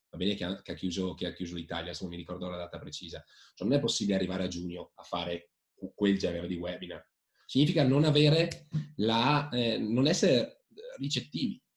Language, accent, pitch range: Italian, native, 90-115 Hz